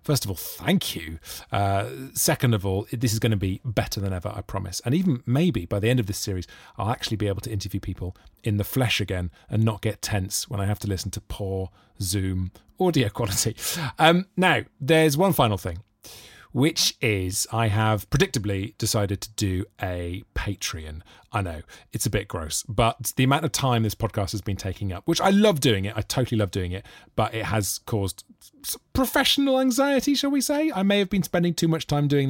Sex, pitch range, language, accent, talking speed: male, 100-130 Hz, English, British, 210 wpm